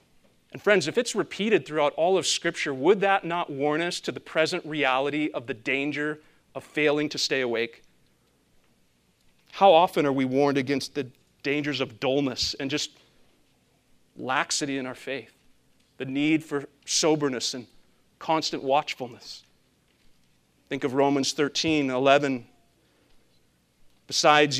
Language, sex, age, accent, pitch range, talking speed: English, male, 40-59, American, 140-165 Hz, 135 wpm